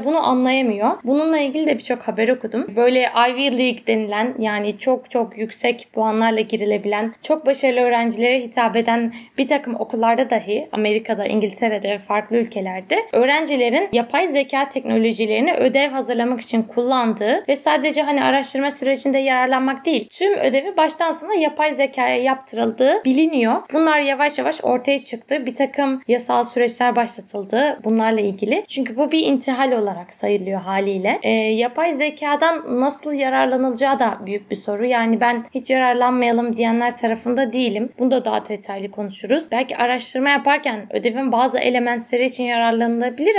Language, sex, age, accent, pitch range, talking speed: Turkish, female, 10-29, native, 225-275 Hz, 140 wpm